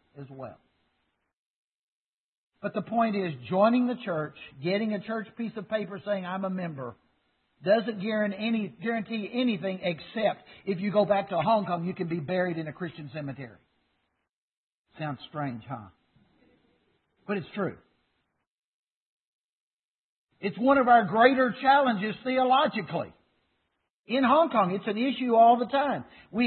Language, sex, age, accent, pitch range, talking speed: English, male, 60-79, American, 155-220 Hz, 140 wpm